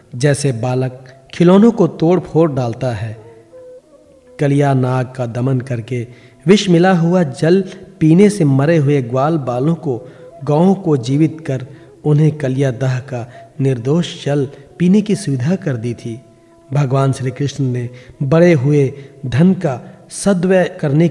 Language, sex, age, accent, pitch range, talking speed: Hindi, male, 40-59, native, 130-165 Hz, 140 wpm